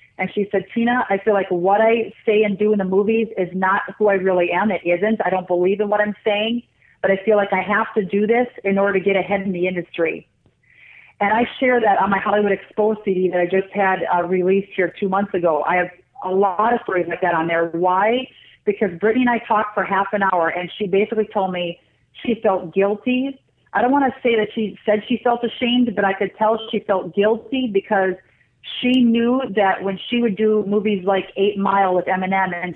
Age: 40-59